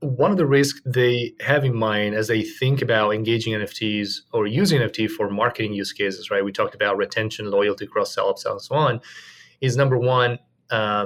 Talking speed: 195 wpm